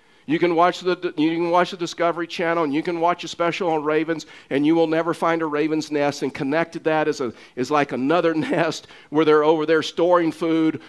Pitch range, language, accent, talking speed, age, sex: 145-170 Hz, English, American, 225 wpm, 50-69, male